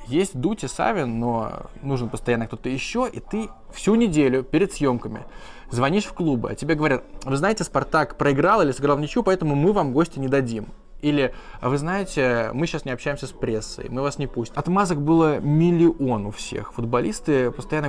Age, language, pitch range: 20-39, Russian, 125-160 Hz